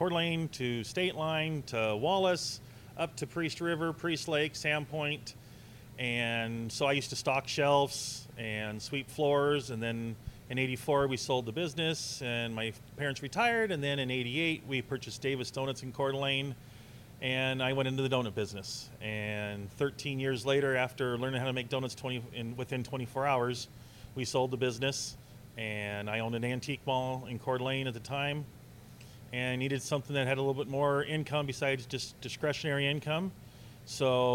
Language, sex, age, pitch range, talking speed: English, male, 30-49, 120-140 Hz, 175 wpm